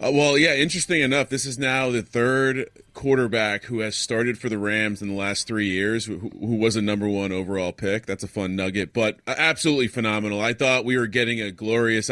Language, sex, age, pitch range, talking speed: English, male, 30-49, 105-130 Hz, 220 wpm